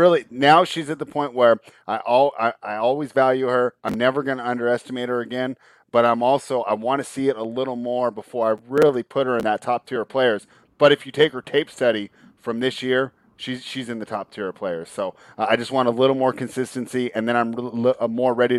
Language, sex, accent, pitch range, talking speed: English, male, American, 110-130 Hz, 230 wpm